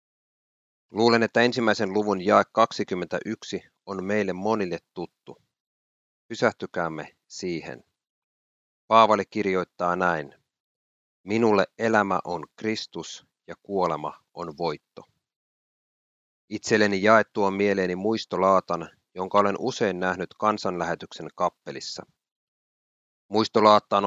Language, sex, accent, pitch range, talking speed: Finnish, male, native, 90-110 Hz, 85 wpm